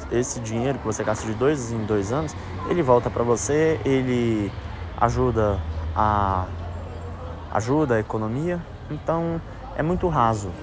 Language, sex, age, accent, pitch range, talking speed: Portuguese, male, 20-39, Brazilian, 100-130 Hz, 135 wpm